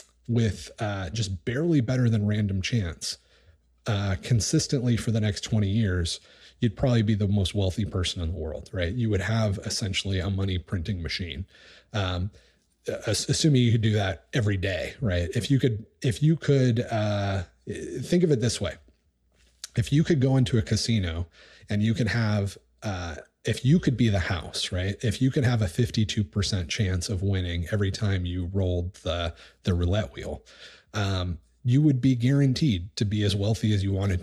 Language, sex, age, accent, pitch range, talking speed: English, male, 30-49, American, 90-115 Hz, 180 wpm